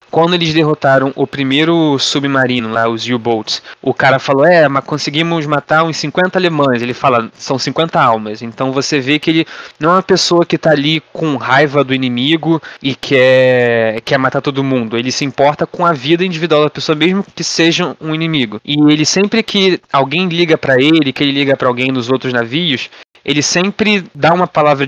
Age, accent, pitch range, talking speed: 20-39, Brazilian, 135-165 Hz, 195 wpm